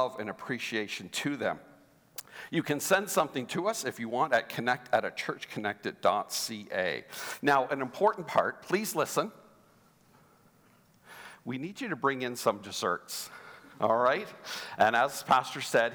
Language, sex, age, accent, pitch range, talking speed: English, male, 50-69, American, 120-160 Hz, 145 wpm